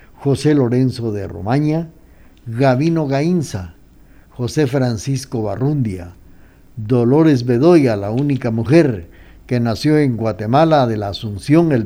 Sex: male